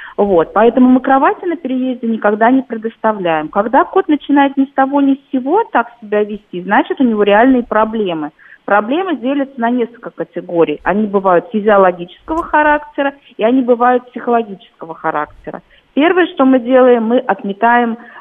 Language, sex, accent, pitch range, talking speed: Russian, female, native, 185-270 Hz, 150 wpm